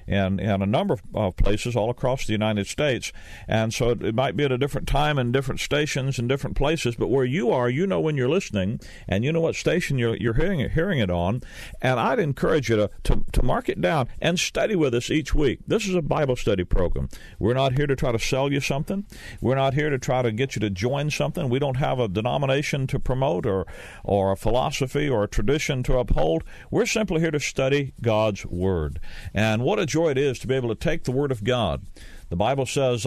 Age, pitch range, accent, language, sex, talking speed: 50-69, 110-145 Hz, American, English, male, 235 wpm